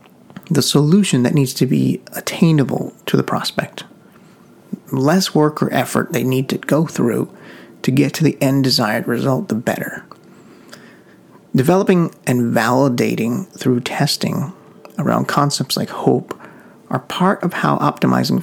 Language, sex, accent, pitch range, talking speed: English, male, American, 130-175 Hz, 140 wpm